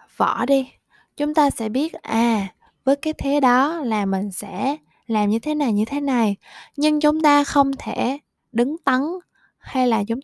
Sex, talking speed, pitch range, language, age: female, 175 wpm, 200-260 Hz, Vietnamese, 20-39